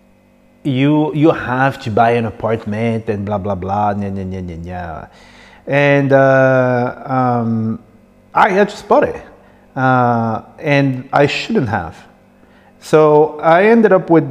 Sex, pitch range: male, 120-155 Hz